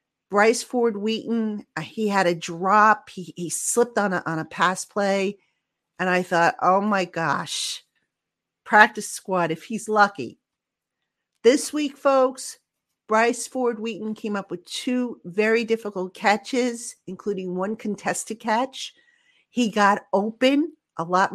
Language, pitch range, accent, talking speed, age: English, 180-220 Hz, American, 140 wpm, 50-69